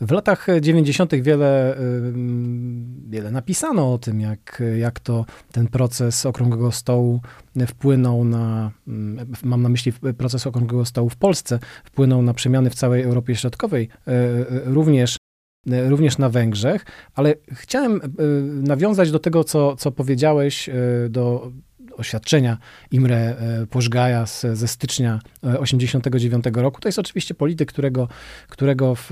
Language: Polish